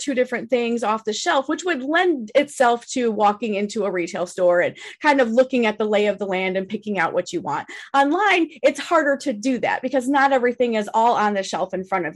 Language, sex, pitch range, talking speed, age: English, female, 200-265 Hz, 240 wpm, 30-49